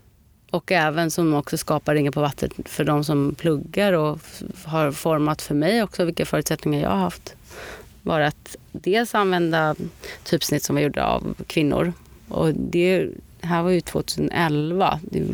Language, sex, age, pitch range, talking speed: Swedish, female, 30-49, 155-180 Hz, 155 wpm